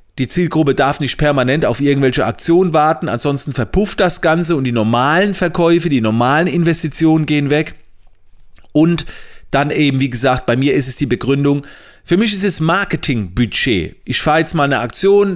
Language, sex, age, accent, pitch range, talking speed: German, male, 30-49, German, 130-170 Hz, 170 wpm